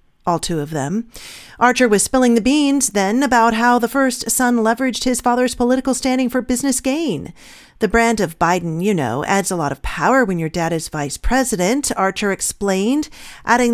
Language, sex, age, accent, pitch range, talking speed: English, female, 40-59, American, 180-245 Hz, 190 wpm